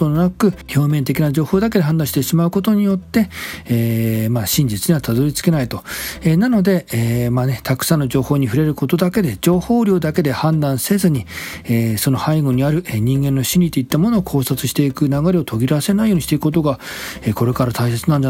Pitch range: 120-165 Hz